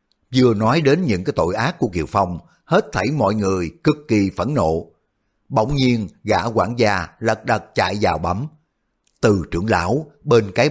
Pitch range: 100-125 Hz